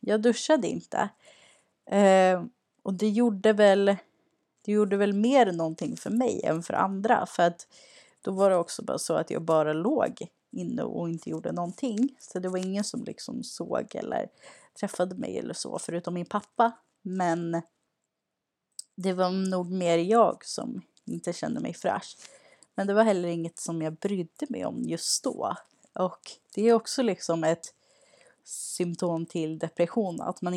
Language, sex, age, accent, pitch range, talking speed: Swedish, female, 30-49, native, 170-220 Hz, 165 wpm